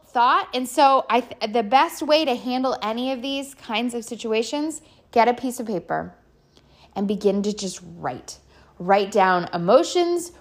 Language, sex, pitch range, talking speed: English, female, 195-285 Hz, 165 wpm